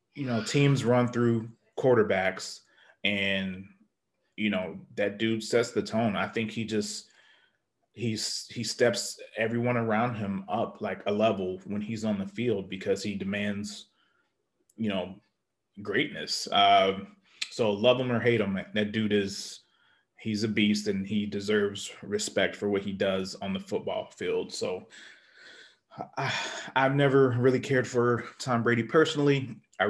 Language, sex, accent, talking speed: English, male, American, 150 wpm